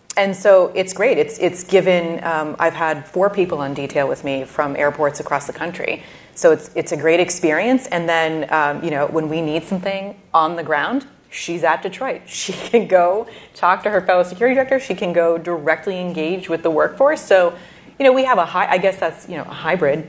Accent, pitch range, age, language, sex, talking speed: American, 155-185 Hz, 30-49, English, female, 220 wpm